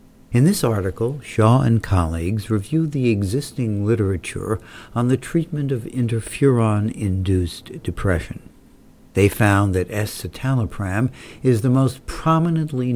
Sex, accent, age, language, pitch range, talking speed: male, American, 60-79, English, 95-125 Hz, 110 wpm